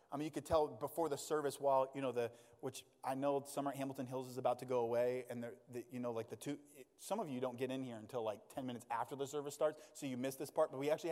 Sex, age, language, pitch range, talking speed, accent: male, 20-39, English, 130-160 Hz, 285 wpm, American